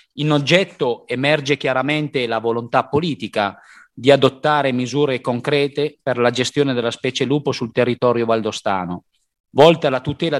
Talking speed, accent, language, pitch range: 135 wpm, native, Italian, 120-145 Hz